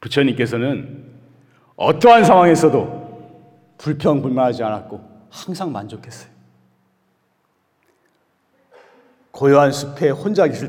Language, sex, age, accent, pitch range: Korean, male, 40-59, native, 140-195 Hz